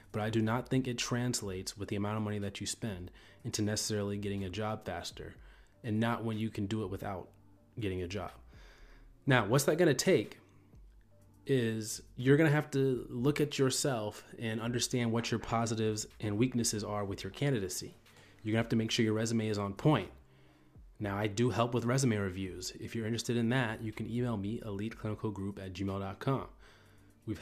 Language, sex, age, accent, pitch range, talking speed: English, male, 30-49, American, 105-120 Hz, 195 wpm